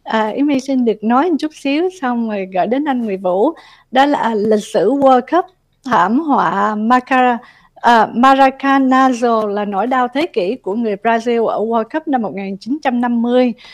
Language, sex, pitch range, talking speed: Vietnamese, female, 225-275 Hz, 175 wpm